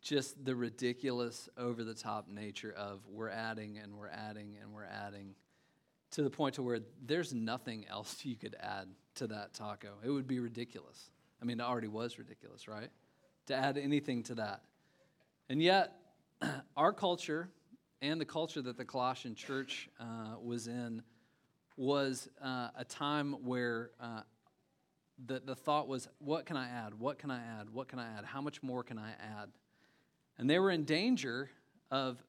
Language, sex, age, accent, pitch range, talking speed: English, male, 40-59, American, 120-155 Hz, 170 wpm